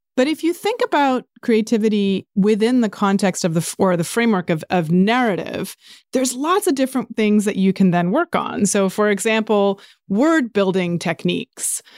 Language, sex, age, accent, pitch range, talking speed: English, female, 30-49, American, 185-235 Hz, 170 wpm